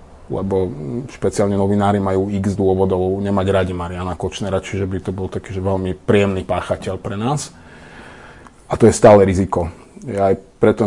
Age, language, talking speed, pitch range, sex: 30-49, Slovak, 155 wpm, 95-110 Hz, male